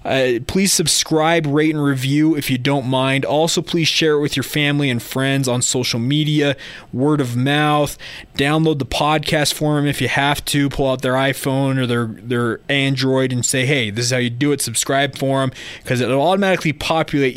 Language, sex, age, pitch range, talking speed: English, male, 20-39, 130-155 Hz, 205 wpm